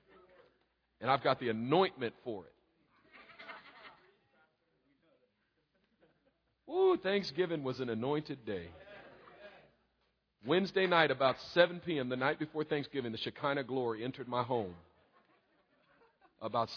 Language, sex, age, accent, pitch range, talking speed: English, male, 50-69, American, 130-160 Hz, 105 wpm